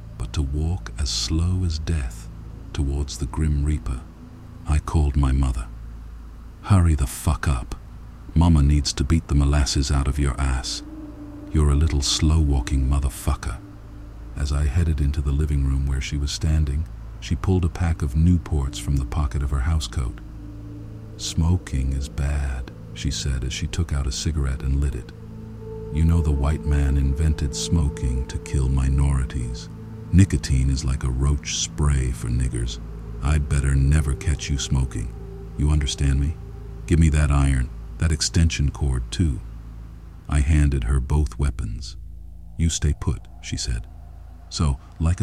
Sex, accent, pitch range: male, American, 70-85 Hz